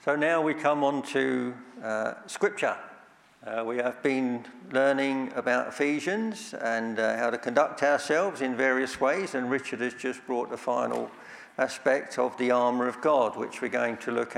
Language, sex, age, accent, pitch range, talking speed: English, male, 50-69, British, 120-140 Hz, 175 wpm